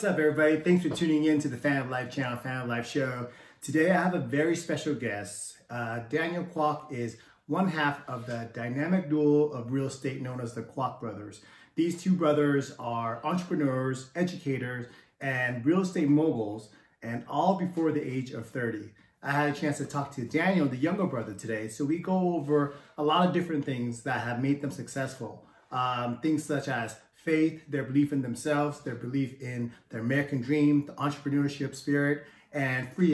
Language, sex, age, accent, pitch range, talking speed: English, male, 30-49, American, 125-155 Hz, 190 wpm